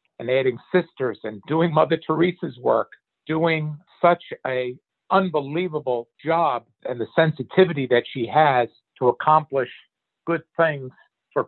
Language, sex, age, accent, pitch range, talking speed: English, male, 50-69, American, 130-165 Hz, 125 wpm